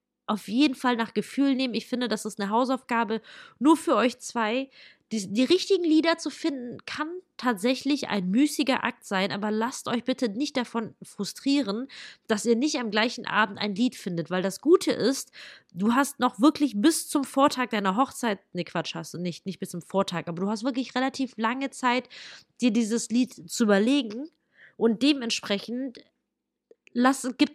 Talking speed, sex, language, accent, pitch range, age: 175 wpm, female, German, German, 210-270 Hz, 20-39